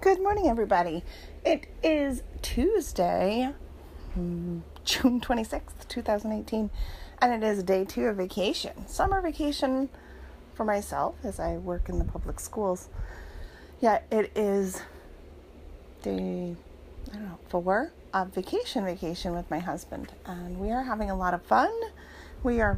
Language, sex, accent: English, female, American